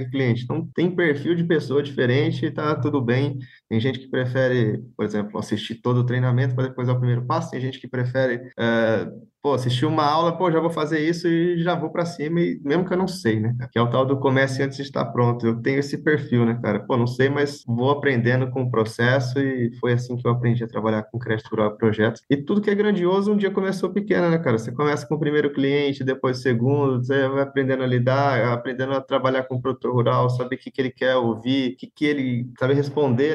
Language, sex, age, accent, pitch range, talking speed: Portuguese, male, 20-39, Brazilian, 120-145 Hz, 245 wpm